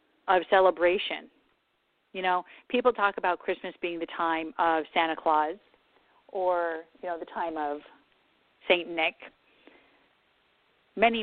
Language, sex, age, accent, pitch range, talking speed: English, female, 40-59, American, 170-210 Hz, 125 wpm